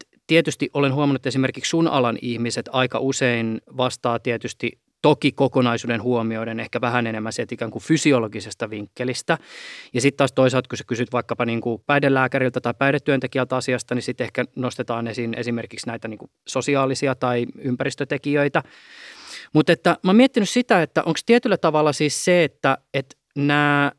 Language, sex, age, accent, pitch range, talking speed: Finnish, male, 20-39, native, 120-150 Hz, 155 wpm